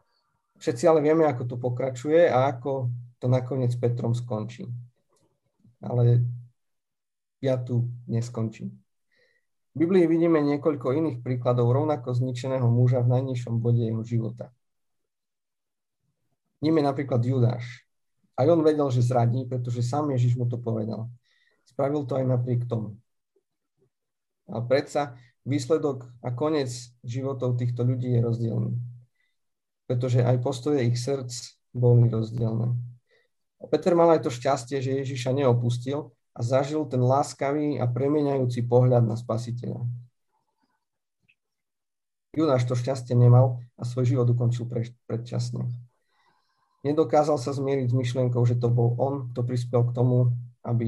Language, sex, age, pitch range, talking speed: Slovak, male, 50-69, 120-135 Hz, 130 wpm